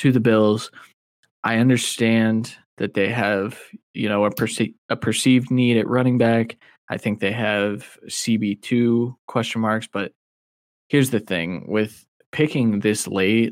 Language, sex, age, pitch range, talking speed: English, male, 20-39, 100-115 Hz, 150 wpm